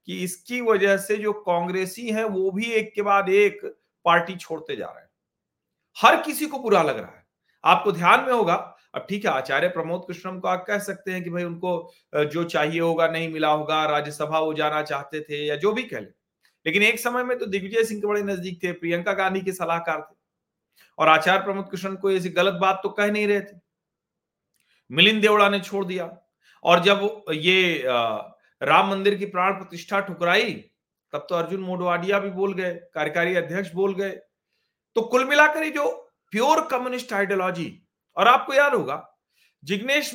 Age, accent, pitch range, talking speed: 40-59, native, 170-205 Hz, 185 wpm